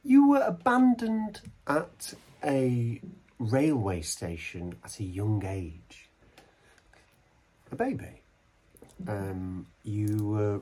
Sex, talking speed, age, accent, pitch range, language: male, 90 wpm, 40-59, British, 100-145 Hz, English